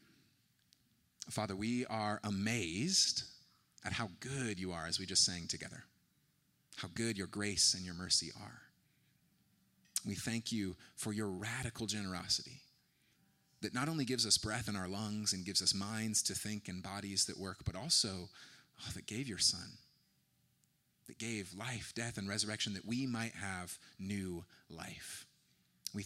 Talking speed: 155 wpm